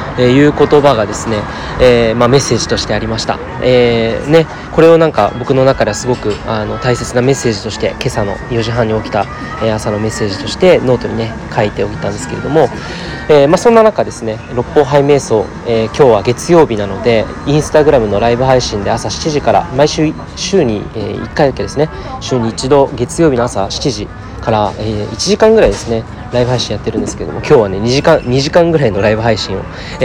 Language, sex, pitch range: Japanese, male, 110-140 Hz